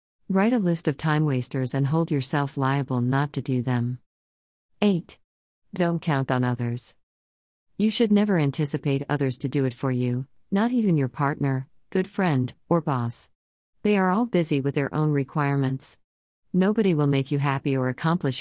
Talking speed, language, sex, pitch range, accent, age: 170 wpm, English, female, 130-160 Hz, American, 40-59